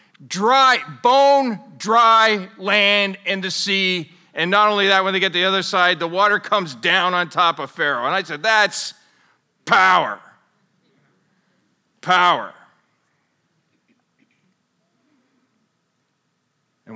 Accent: American